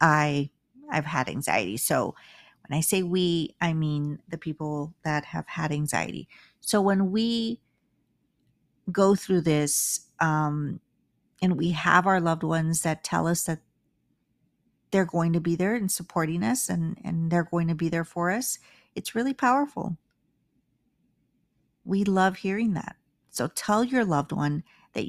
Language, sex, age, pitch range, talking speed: English, female, 50-69, 160-195 Hz, 155 wpm